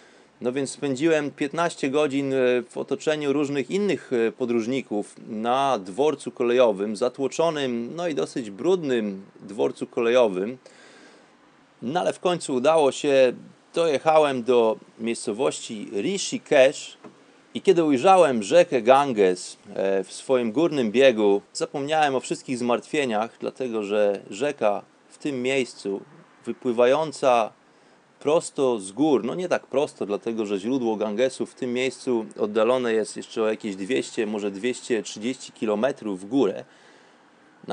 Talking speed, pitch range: 120 wpm, 115-140 Hz